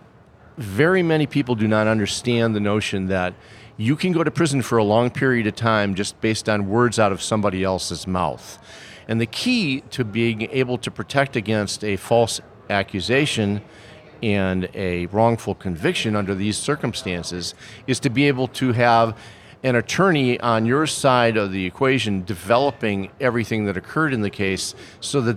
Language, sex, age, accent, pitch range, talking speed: English, male, 50-69, American, 100-125 Hz, 170 wpm